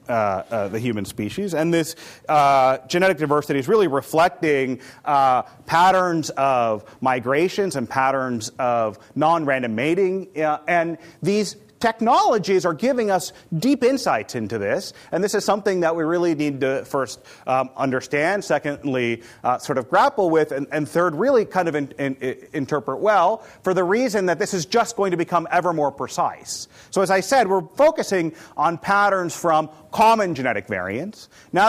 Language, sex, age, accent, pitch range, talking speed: English, male, 30-49, American, 135-185 Hz, 160 wpm